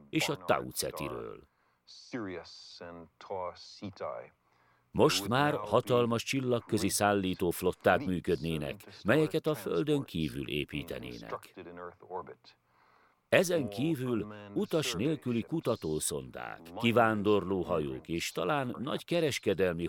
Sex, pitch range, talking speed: male, 85-140 Hz, 75 wpm